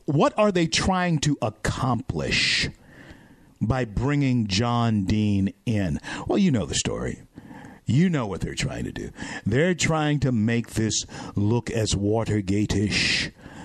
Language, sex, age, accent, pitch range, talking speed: English, male, 50-69, American, 105-130 Hz, 135 wpm